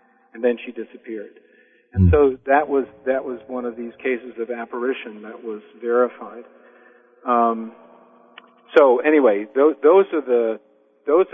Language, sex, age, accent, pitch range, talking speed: English, male, 50-69, American, 110-125 Hz, 145 wpm